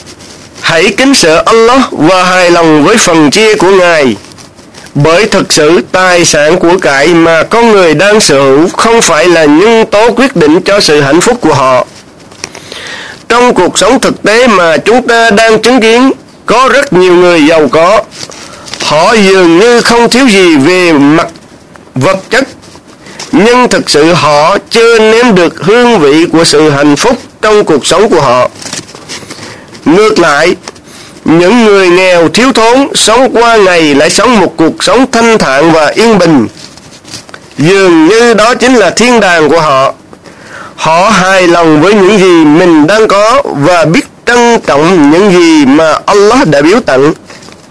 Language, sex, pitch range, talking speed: Vietnamese, male, 180-235 Hz, 165 wpm